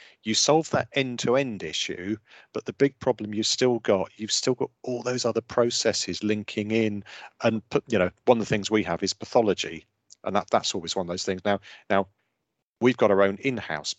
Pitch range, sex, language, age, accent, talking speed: 95-120 Hz, male, English, 40-59, British, 205 wpm